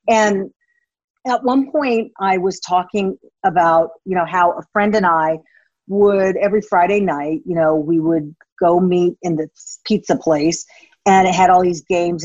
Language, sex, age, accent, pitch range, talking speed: English, female, 40-59, American, 175-235 Hz, 170 wpm